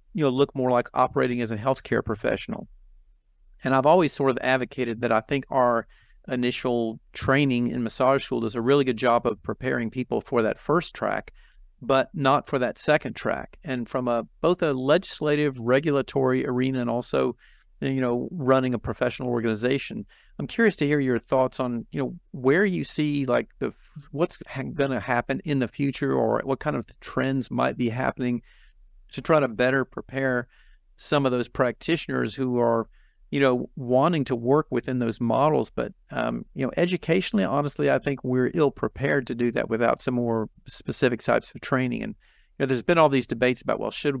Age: 50-69